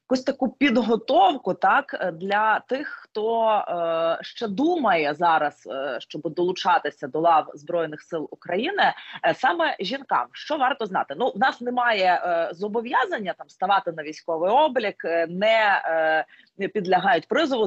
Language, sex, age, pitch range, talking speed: Ukrainian, female, 20-39, 165-225 Hz, 140 wpm